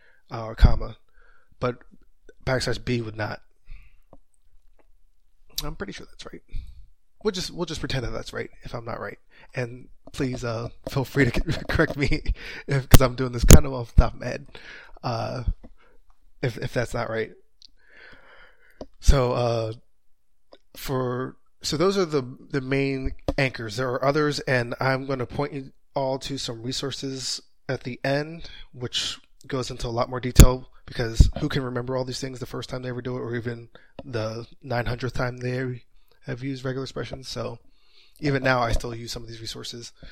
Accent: American